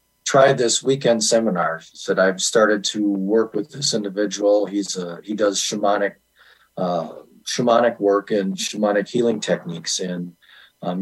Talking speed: 145 wpm